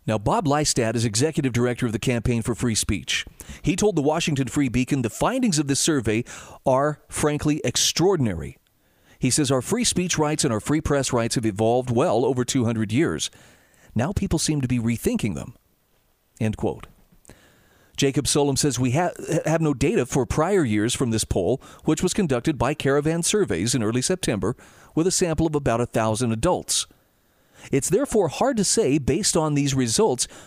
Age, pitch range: 40-59, 120-155 Hz